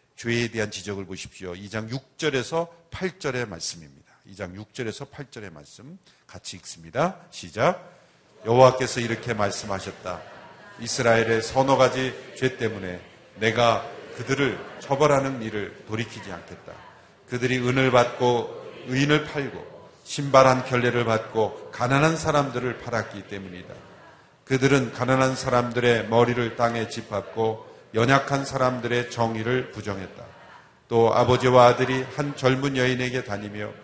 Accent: native